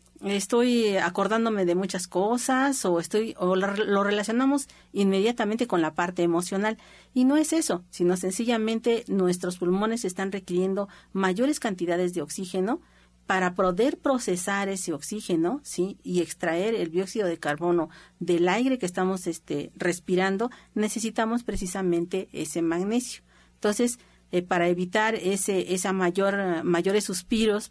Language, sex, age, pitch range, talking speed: Spanish, female, 40-59, 175-215 Hz, 130 wpm